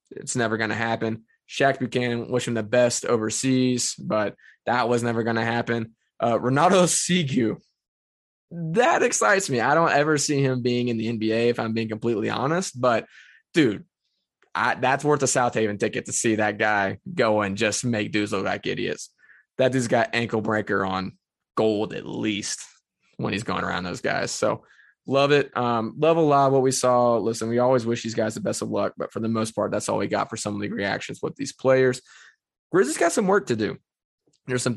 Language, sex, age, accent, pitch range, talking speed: English, male, 20-39, American, 110-130 Hz, 210 wpm